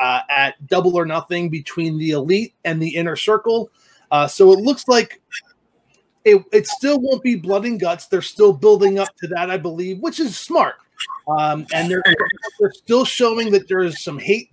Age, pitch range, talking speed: 30-49, 160-220 Hz, 195 wpm